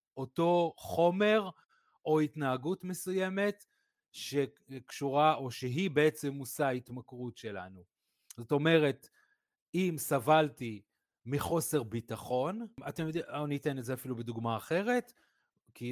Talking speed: 105 wpm